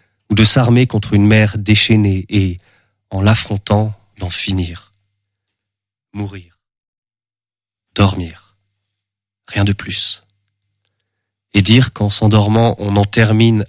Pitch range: 100-110 Hz